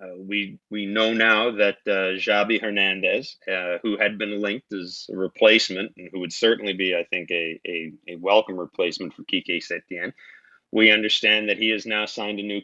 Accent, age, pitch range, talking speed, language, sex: American, 40-59, 95-110 Hz, 195 wpm, English, male